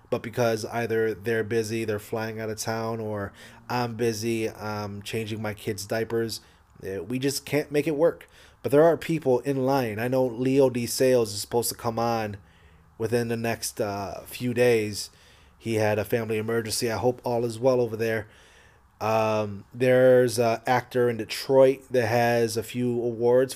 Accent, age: American, 30-49